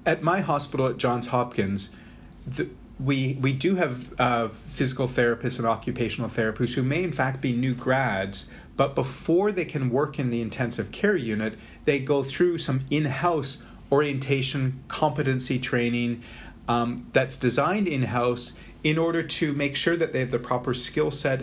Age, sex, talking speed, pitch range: 40-59, male, 160 wpm, 120-140 Hz